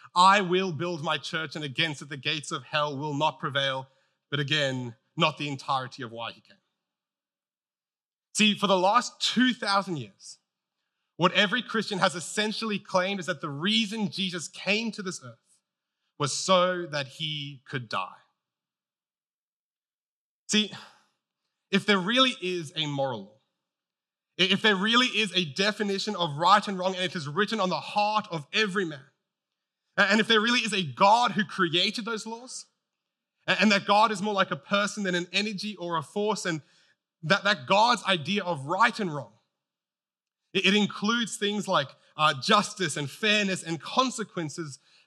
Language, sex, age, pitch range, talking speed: English, male, 30-49, 155-210 Hz, 160 wpm